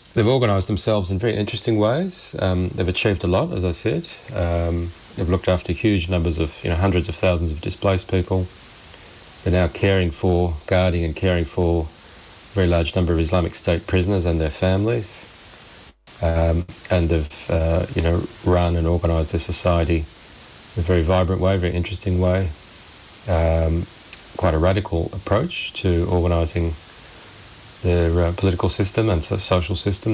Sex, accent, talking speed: male, Australian, 165 wpm